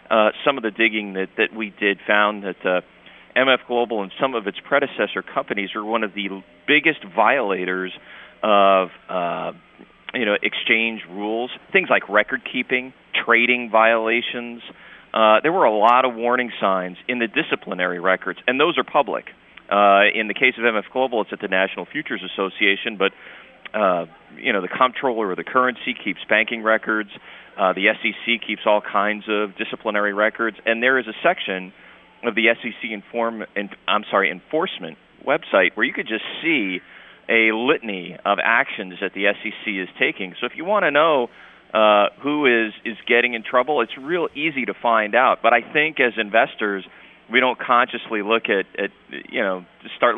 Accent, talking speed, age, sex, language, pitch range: American, 180 wpm, 40-59, male, English, 100-120 Hz